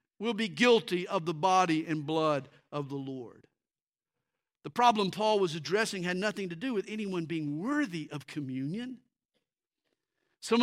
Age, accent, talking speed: 50-69, American, 150 wpm